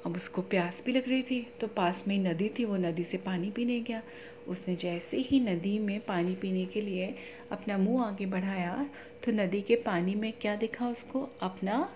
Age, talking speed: 30-49, 205 wpm